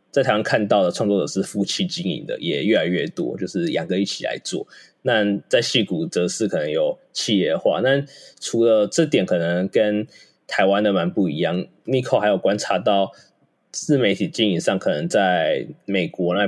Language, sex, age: Chinese, male, 20-39